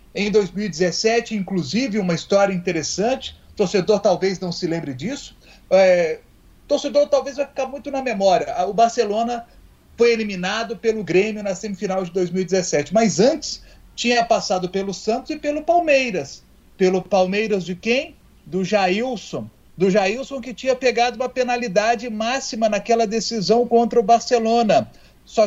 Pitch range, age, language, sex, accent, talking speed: 185-235 Hz, 40-59, Portuguese, male, Brazilian, 135 wpm